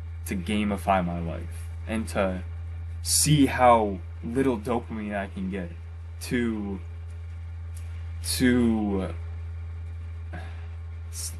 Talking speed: 90 wpm